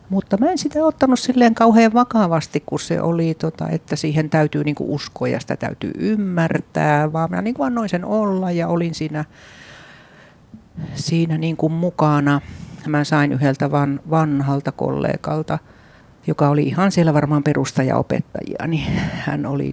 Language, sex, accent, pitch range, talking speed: Finnish, female, native, 140-180 Hz, 140 wpm